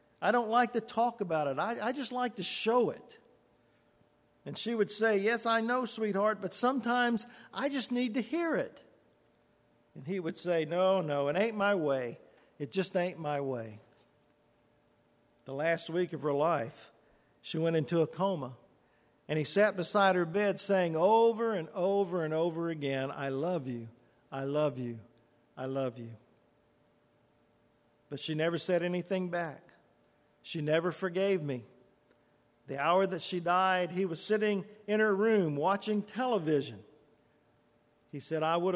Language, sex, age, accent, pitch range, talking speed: English, male, 50-69, American, 145-200 Hz, 165 wpm